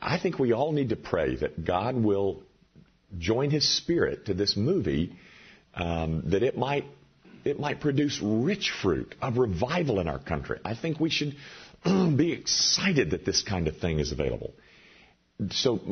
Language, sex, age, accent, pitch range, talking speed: English, male, 50-69, American, 75-120 Hz, 165 wpm